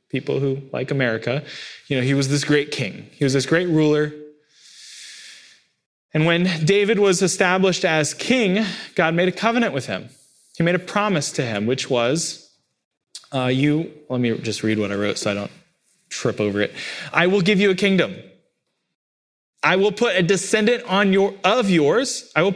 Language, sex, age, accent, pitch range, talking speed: English, male, 20-39, American, 135-195 Hz, 185 wpm